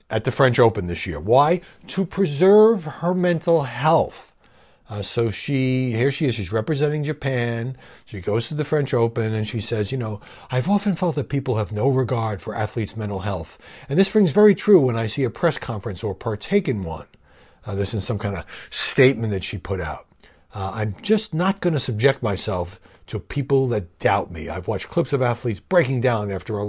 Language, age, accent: English, 60-79, American